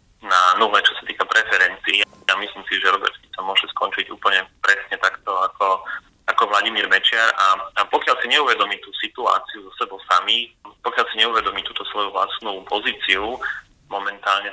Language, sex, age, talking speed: Slovak, male, 30-49, 160 wpm